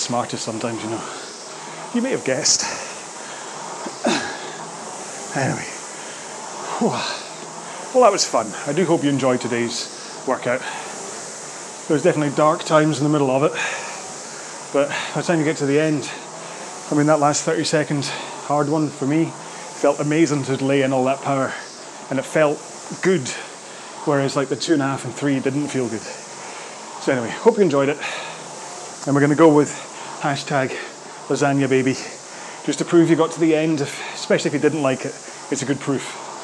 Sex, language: male, English